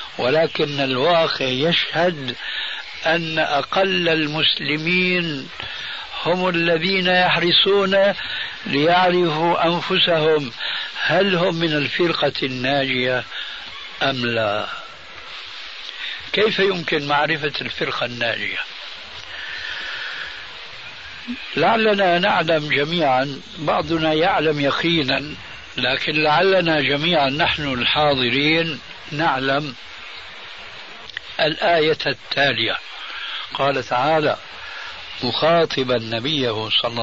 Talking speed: 70 wpm